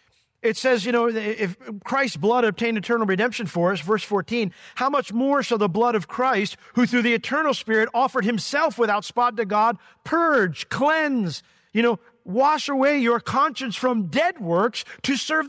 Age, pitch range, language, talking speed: 50-69, 180-235 Hz, English, 180 wpm